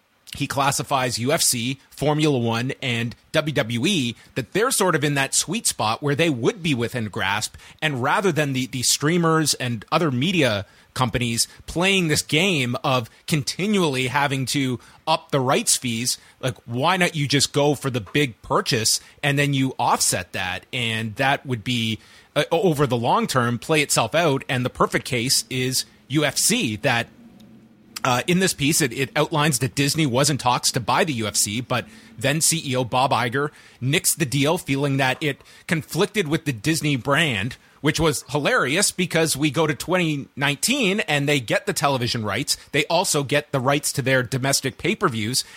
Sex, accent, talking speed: male, American, 170 wpm